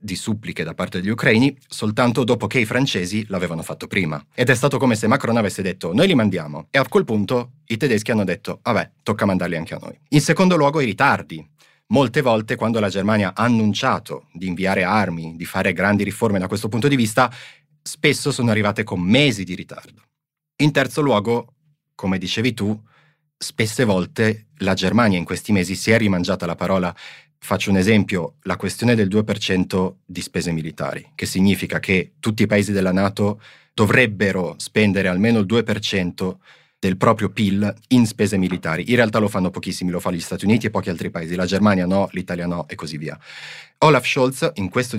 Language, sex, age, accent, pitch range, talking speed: Italian, male, 30-49, native, 95-125 Hz, 190 wpm